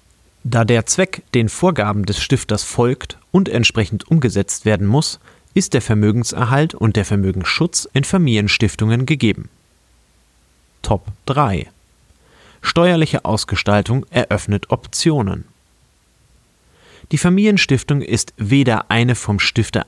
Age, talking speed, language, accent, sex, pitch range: 30-49, 105 wpm, German, German, male, 100-130 Hz